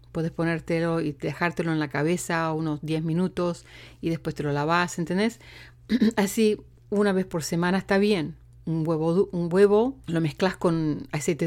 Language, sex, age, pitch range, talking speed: English, female, 40-59, 160-225 Hz, 155 wpm